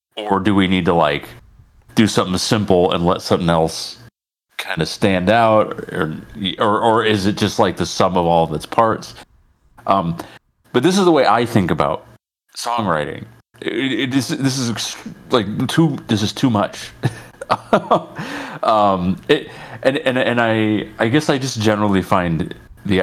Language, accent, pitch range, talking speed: English, American, 80-110 Hz, 160 wpm